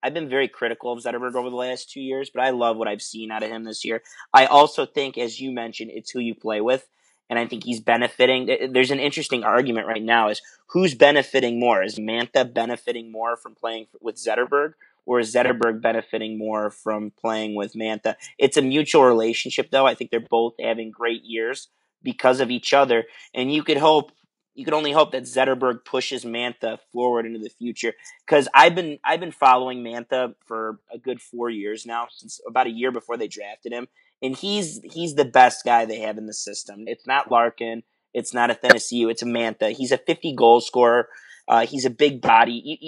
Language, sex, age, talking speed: English, male, 30-49, 205 wpm